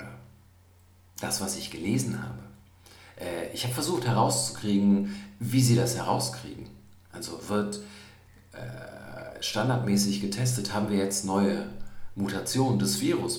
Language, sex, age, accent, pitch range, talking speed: German, male, 50-69, German, 90-115 Hz, 110 wpm